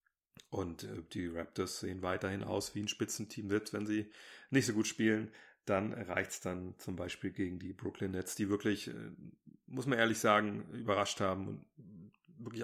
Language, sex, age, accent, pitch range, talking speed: German, male, 40-59, German, 95-115 Hz, 165 wpm